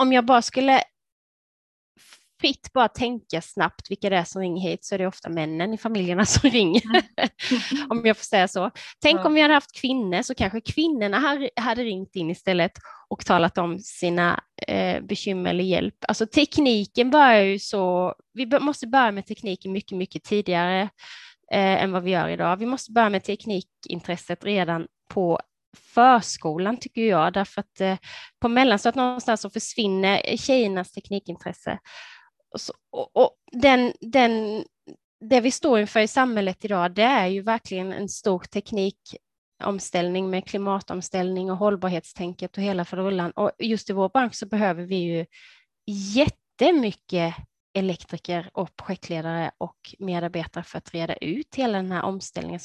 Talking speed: 145 wpm